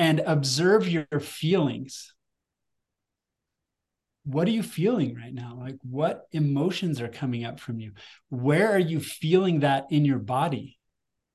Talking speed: 135 wpm